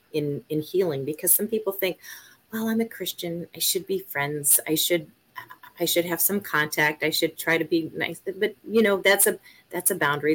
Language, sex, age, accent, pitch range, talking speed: English, female, 40-59, American, 140-170 Hz, 210 wpm